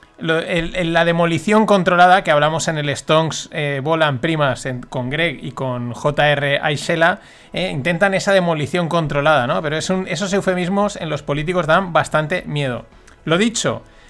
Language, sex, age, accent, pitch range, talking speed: Spanish, male, 30-49, Spanish, 145-195 Hz, 155 wpm